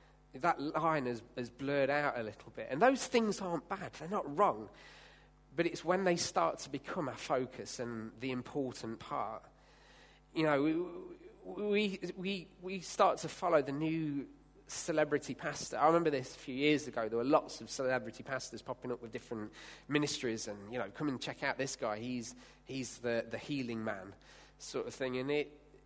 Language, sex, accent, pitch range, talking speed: English, male, British, 120-160 Hz, 185 wpm